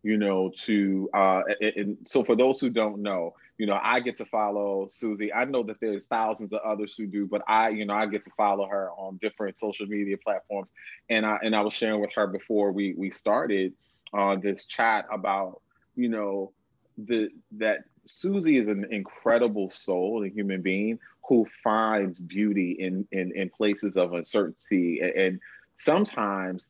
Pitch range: 95-110 Hz